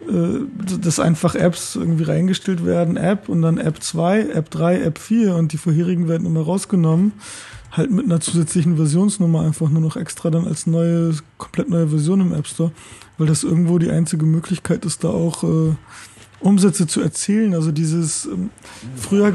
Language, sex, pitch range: German, male, 165-185 Hz